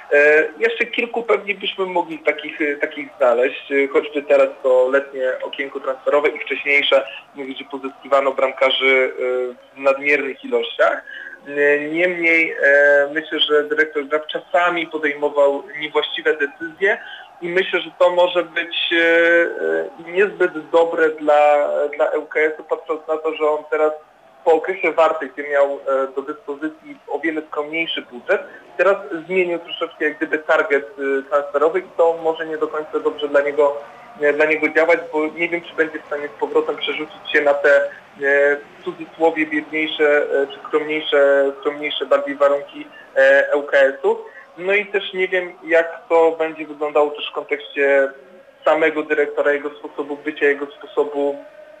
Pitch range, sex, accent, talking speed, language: 140-170 Hz, male, native, 140 wpm, Polish